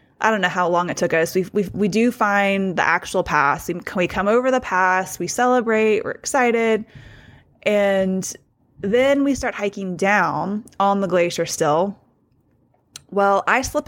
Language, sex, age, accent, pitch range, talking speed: English, female, 20-39, American, 175-210 Hz, 165 wpm